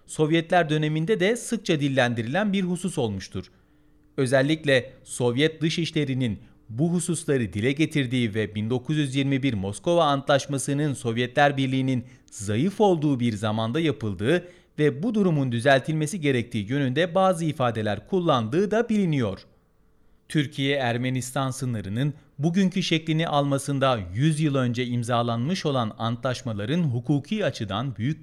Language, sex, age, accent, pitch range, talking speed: Turkish, male, 40-59, native, 120-165 Hz, 110 wpm